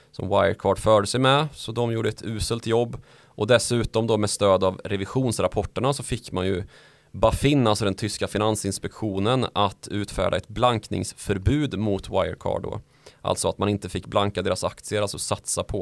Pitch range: 95-115 Hz